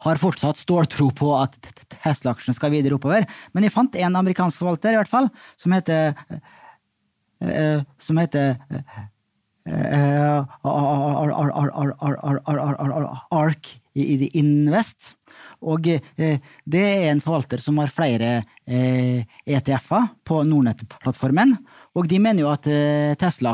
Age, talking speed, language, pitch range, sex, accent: 30-49, 120 wpm, English, 135-165 Hz, male, Norwegian